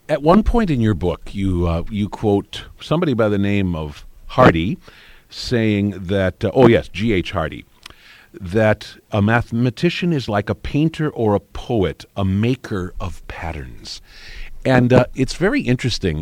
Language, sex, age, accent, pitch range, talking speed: English, male, 50-69, American, 90-115 Hz, 165 wpm